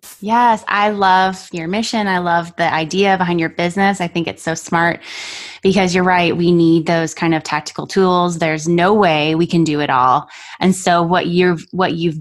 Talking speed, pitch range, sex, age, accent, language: 200 wpm, 165-205 Hz, female, 20-39, American, English